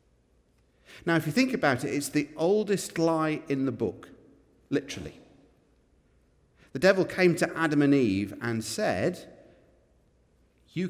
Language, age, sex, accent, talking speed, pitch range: English, 50-69, male, British, 130 wpm, 110-165 Hz